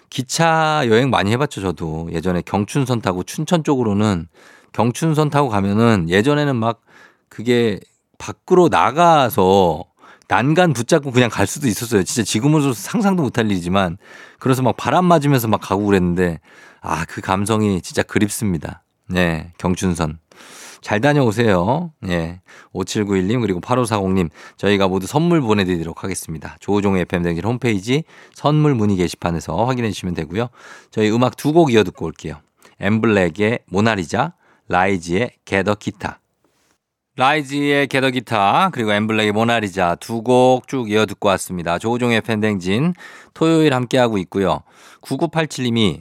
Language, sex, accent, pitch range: Korean, male, native, 95-130 Hz